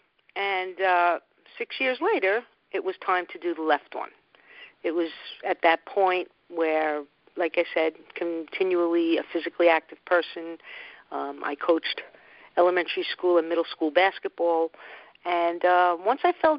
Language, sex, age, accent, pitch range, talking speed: English, female, 50-69, American, 165-210 Hz, 150 wpm